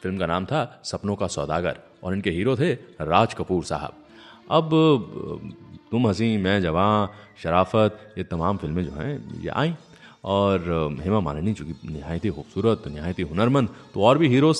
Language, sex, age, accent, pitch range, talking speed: English, male, 30-49, Indian, 95-125 Hz, 160 wpm